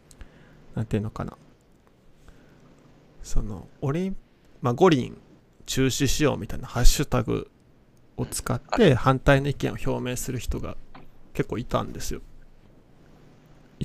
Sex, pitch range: male, 110-135 Hz